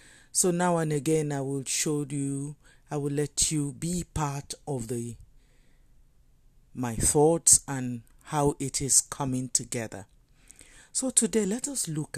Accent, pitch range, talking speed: Nigerian, 120-155 Hz, 145 wpm